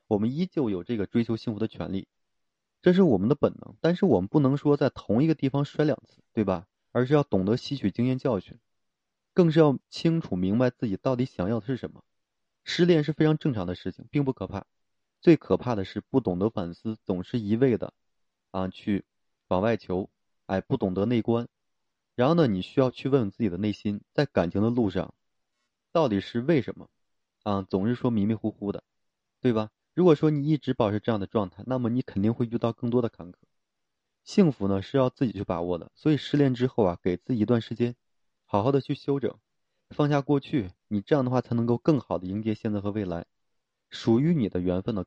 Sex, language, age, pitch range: male, Chinese, 20-39, 100-130 Hz